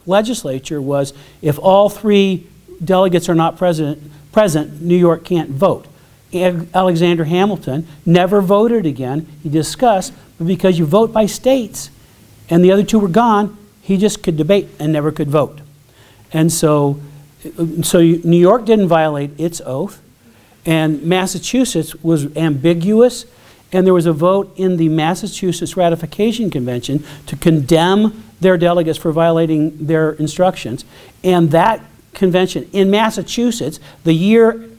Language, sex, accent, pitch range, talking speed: English, male, American, 150-185 Hz, 135 wpm